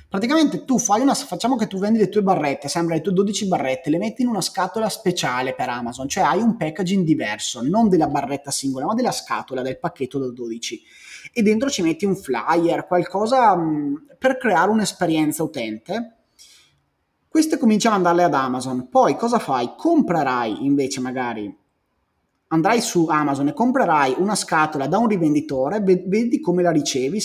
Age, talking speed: 30-49, 170 wpm